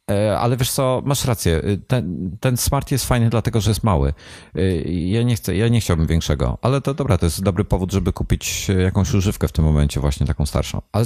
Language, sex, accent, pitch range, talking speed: Polish, male, native, 85-110 Hz, 210 wpm